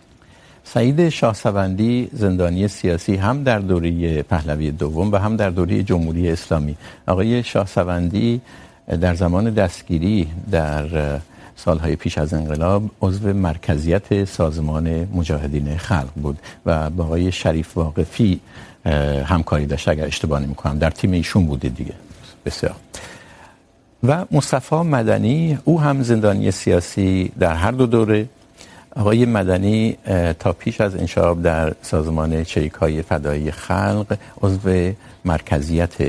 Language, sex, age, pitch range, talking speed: Urdu, male, 60-79, 80-110 Hz, 120 wpm